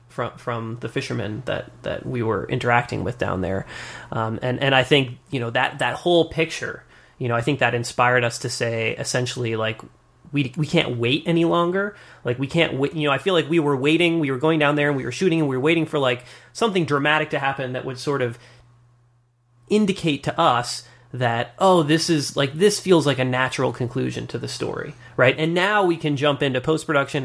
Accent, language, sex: American, English, male